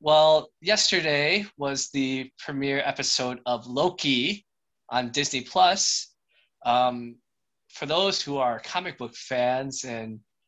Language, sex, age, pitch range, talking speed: English, male, 20-39, 115-145 Hz, 115 wpm